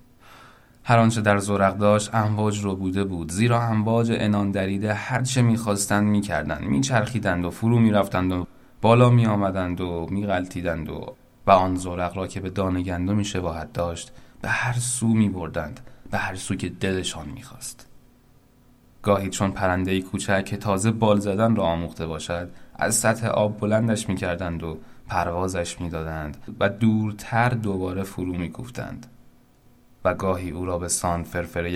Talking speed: 155 wpm